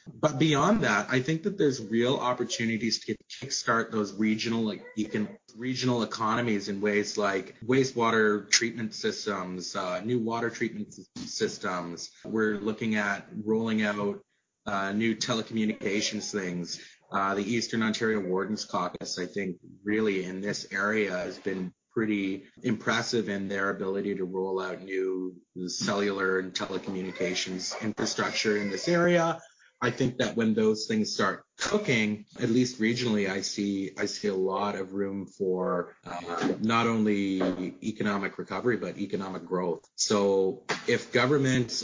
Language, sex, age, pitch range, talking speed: English, male, 30-49, 100-125 Hz, 140 wpm